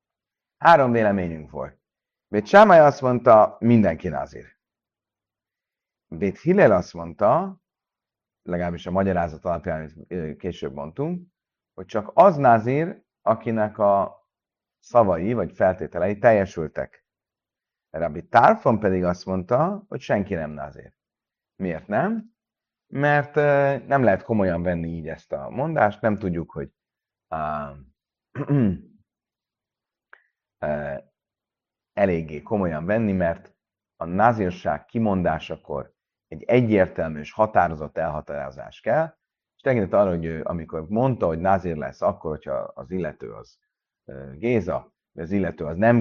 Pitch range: 85-145 Hz